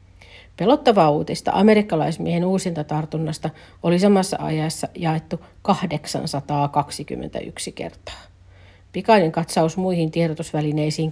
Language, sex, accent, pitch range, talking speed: Finnish, female, native, 145-185 Hz, 80 wpm